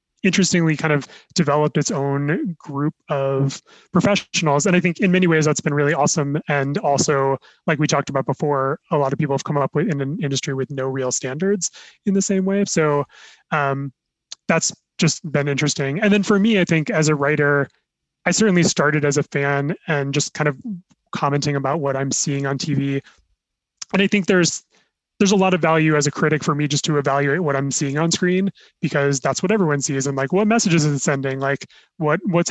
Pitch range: 140-175 Hz